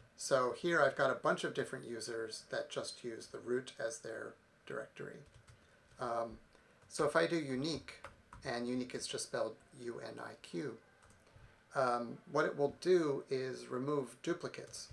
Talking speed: 145 wpm